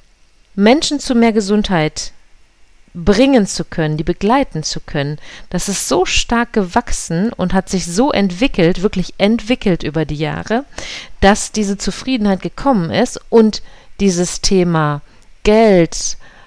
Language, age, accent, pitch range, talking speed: German, 50-69, German, 170-220 Hz, 130 wpm